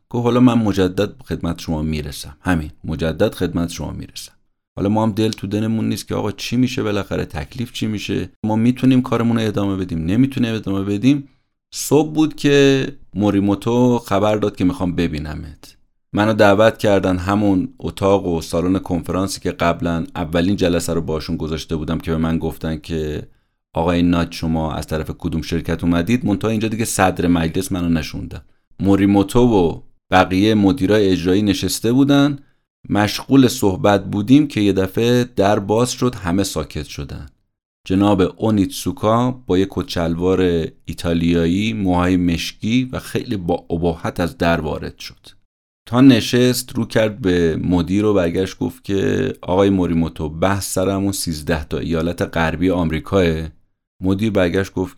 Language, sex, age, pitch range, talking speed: Persian, male, 30-49, 85-110 Hz, 150 wpm